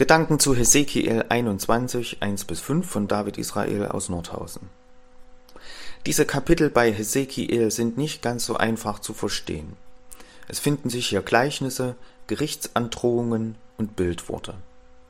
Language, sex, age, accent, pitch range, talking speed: German, male, 30-49, German, 105-135 Hz, 115 wpm